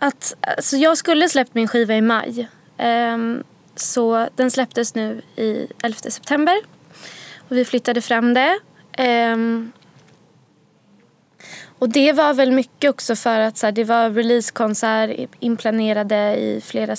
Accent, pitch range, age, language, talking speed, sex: native, 205-245 Hz, 20-39, Swedish, 140 wpm, female